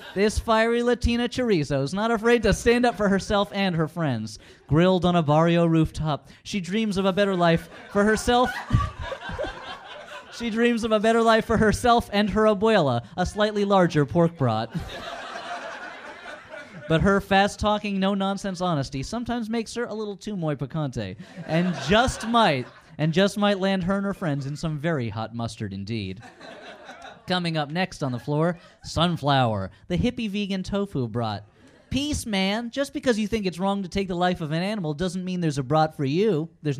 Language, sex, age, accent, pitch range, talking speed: English, male, 30-49, American, 145-205 Hz, 180 wpm